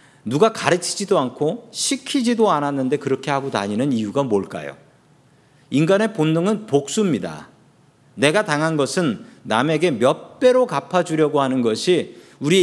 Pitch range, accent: 125-185 Hz, native